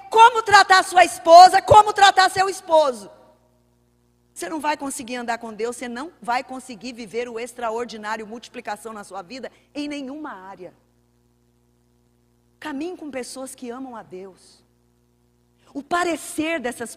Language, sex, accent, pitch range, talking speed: Portuguese, female, Brazilian, 245-360 Hz, 140 wpm